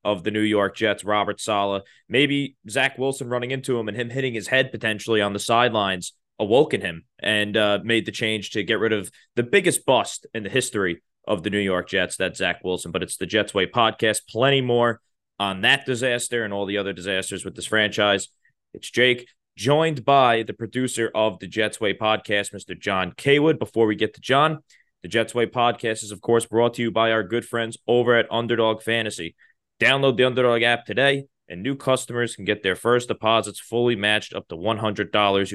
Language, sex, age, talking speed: English, male, 20-39, 205 wpm